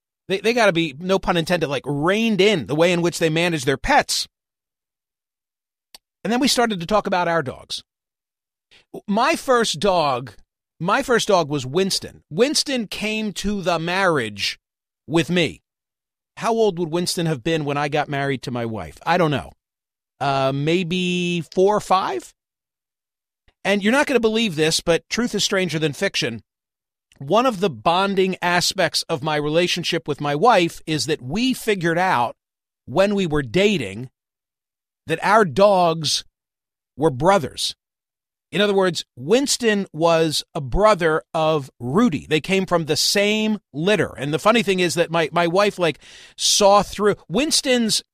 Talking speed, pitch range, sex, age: 160 wpm, 155-210 Hz, male, 50-69